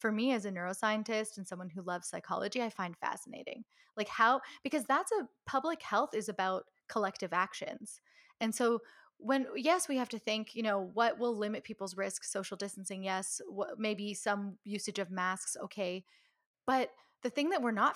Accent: American